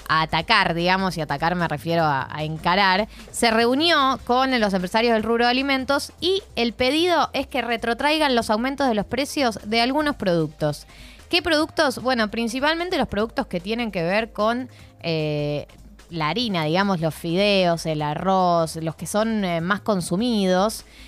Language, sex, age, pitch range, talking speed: Spanish, female, 20-39, 180-270 Hz, 165 wpm